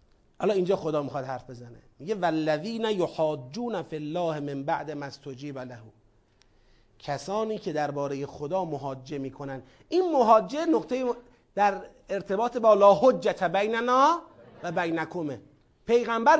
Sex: male